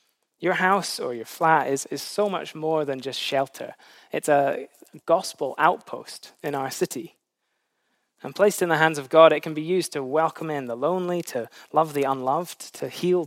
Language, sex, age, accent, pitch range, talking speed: English, male, 20-39, British, 135-180 Hz, 190 wpm